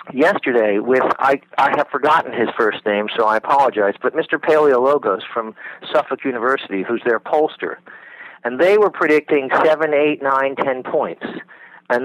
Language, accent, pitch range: English, American, 125-160 Hz